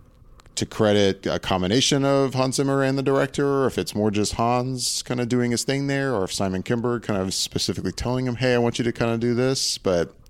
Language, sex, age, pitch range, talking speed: English, male, 30-49, 95-125 Hz, 240 wpm